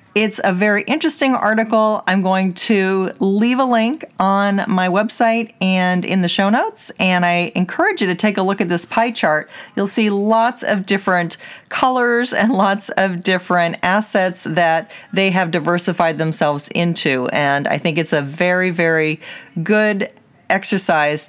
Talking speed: 160 wpm